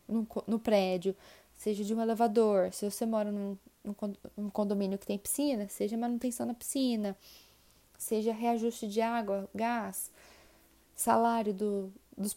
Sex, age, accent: female, 10-29, Brazilian